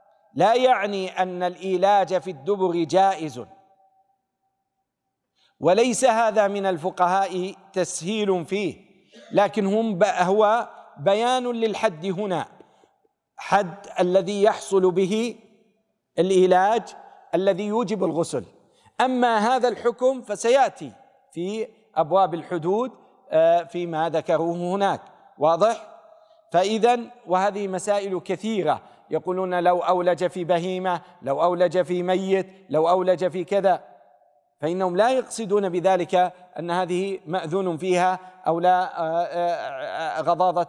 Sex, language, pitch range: male, Arabic, 180-215 Hz